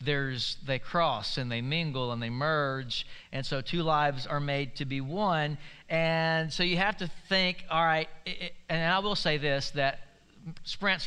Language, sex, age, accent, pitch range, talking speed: English, male, 40-59, American, 140-170 Hz, 180 wpm